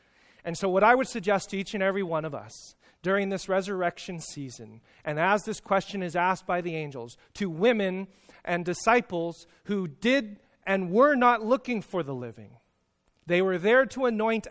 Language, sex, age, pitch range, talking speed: English, male, 30-49, 165-220 Hz, 180 wpm